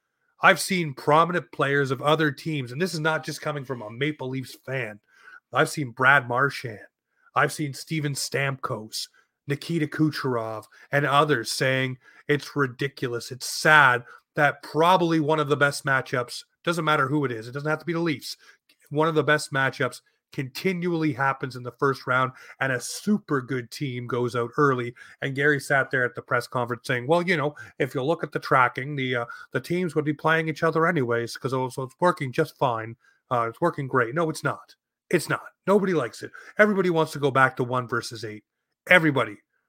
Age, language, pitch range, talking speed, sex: 30-49, English, 130-155 Hz, 195 wpm, male